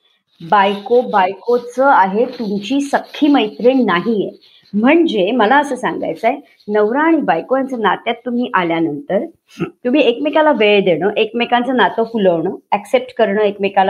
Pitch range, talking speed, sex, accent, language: 215-295 Hz, 85 wpm, male, native, Marathi